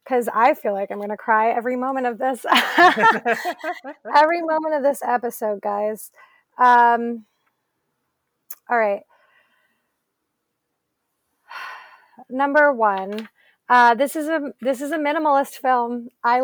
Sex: female